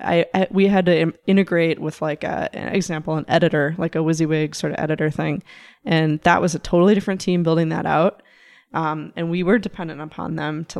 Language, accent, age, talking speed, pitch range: English, American, 10-29, 195 wpm, 155-180 Hz